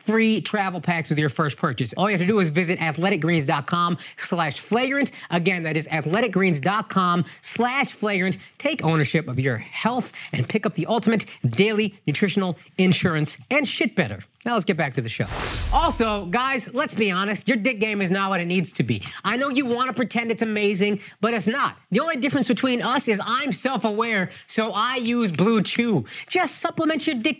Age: 30-49